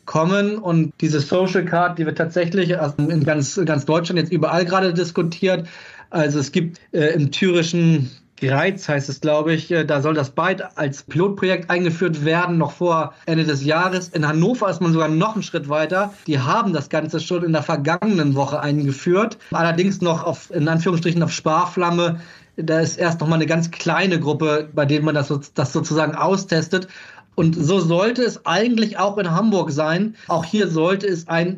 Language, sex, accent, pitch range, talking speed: German, male, German, 155-185 Hz, 185 wpm